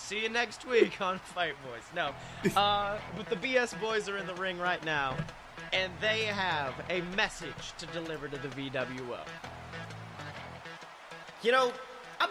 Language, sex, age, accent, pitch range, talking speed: English, male, 30-49, American, 180-260 Hz, 155 wpm